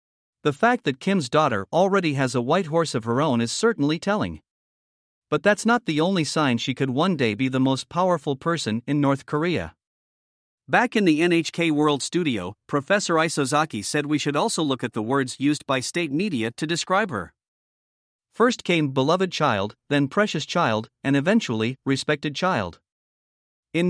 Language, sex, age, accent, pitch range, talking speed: English, male, 50-69, American, 130-170 Hz, 175 wpm